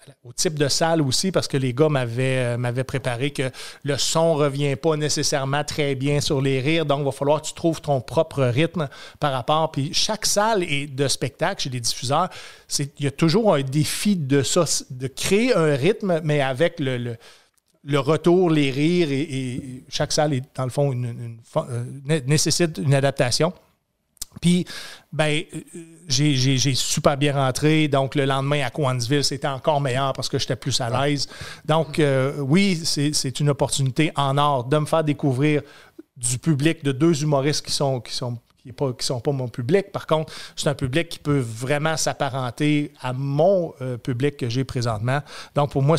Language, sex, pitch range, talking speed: French, male, 130-155 Hz, 175 wpm